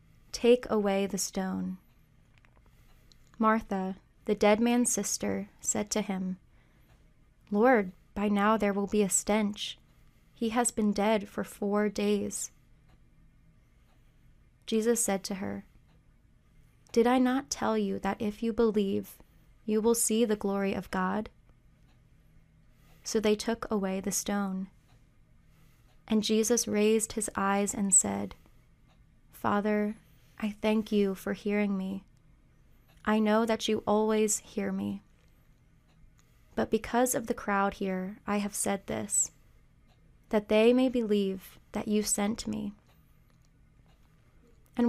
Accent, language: American, English